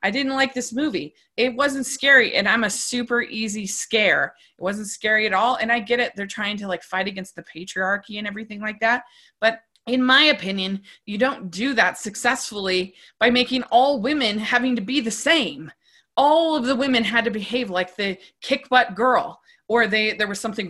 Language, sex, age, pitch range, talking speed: English, female, 20-39, 185-245 Hz, 205 wpm